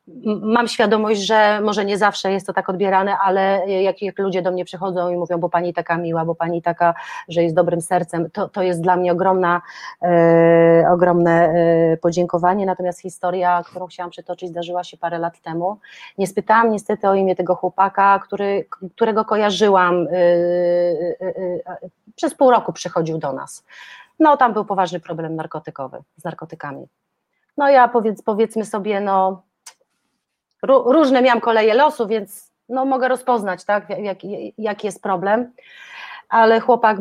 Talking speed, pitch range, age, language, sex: 145 wpm, 175-205 Hz, 30-49, Polish, female